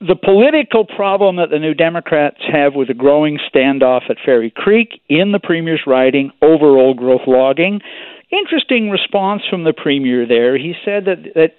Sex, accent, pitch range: male, American, 135-195 Hz